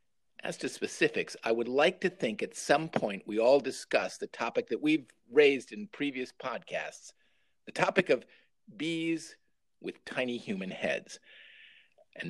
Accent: American